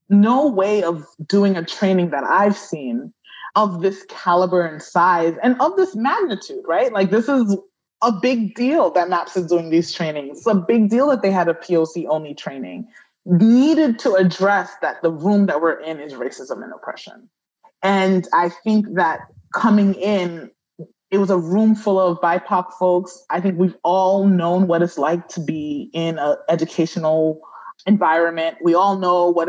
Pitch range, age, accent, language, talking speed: 165-210 Hz, 20-39, American, English, 175 wpm